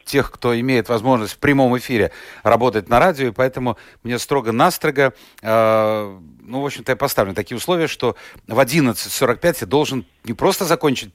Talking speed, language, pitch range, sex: 165 wpm, Russian, 120-150 Hz, male